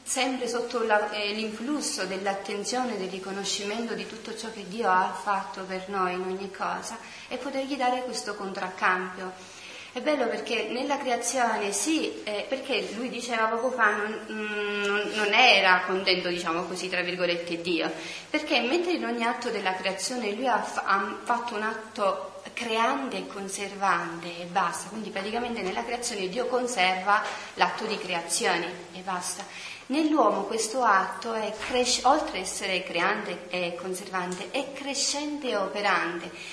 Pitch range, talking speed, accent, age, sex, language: 185-240 Hz, 145 wpm, native, 30-49, female, Italian